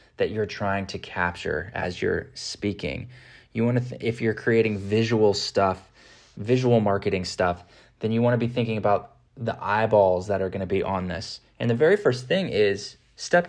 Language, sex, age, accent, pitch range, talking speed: English, male, 20-39, American, 105-125 Hz, 175 wpm